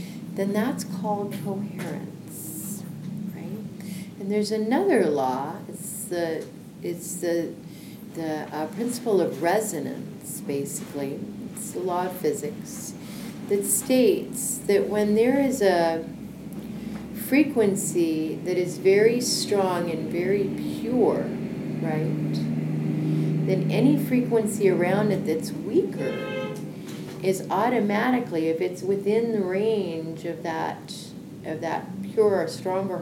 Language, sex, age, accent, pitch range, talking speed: English, female, 40-59, American, 170-210 Hz, 110 wpm